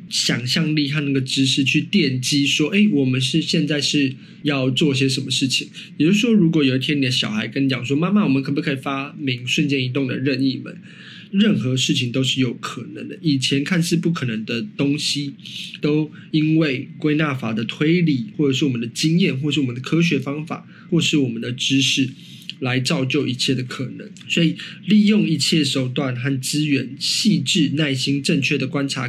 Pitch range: 135-165 Hz